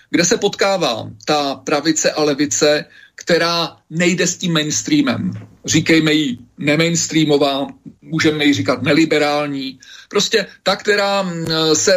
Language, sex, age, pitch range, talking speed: Slovak, male, 40-59, 150-180 Hz, 115 wpm